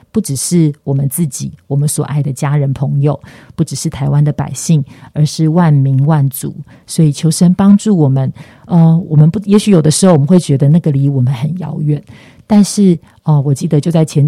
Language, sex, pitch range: Chinese, female, 140-165 Hz